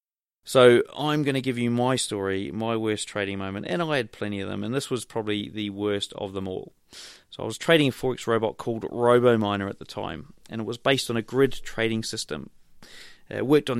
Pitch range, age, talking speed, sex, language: 105-125 Hz, 20-39, 220 wpm, male, English